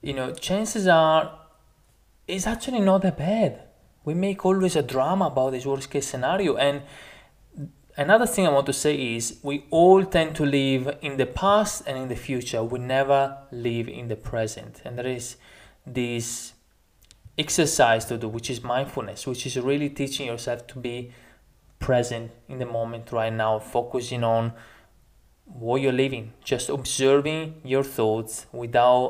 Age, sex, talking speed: 20-39, male, 160 wpm